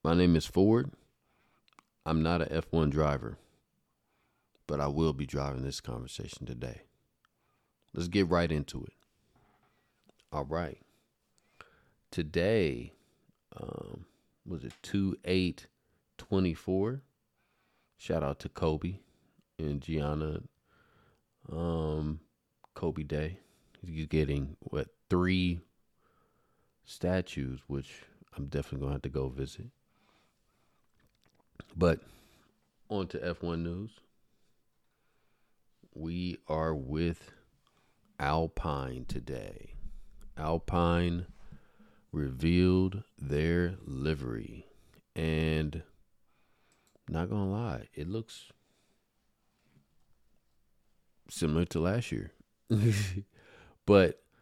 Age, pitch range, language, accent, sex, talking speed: 40-59, 75-95 Hz, English, American, male, 85 wpm